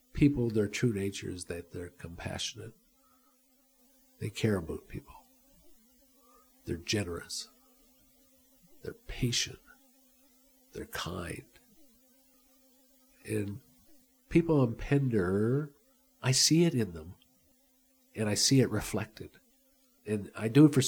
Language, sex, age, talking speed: English, male, 50-69, 105 wpm